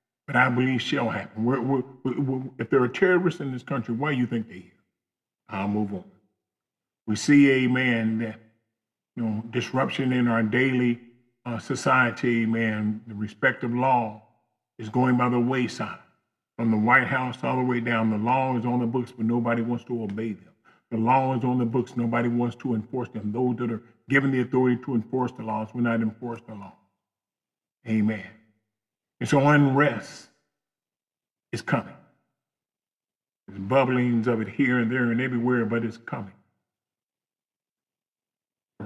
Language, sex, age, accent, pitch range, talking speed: English, male, 40-59, American, 115-135 Hz, 165 wpm